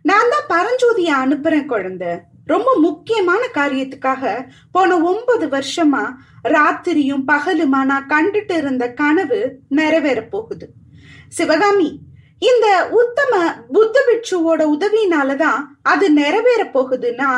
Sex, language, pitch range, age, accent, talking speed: female, Tamil, 275-375 Hz, 20-39, native, 95 wpm